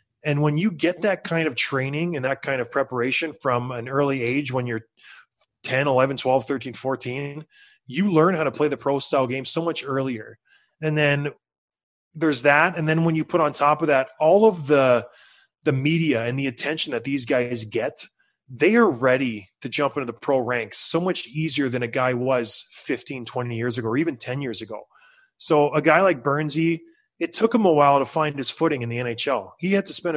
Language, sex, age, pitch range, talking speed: English, male, 20-39, 130-170 Hz, 215 wpm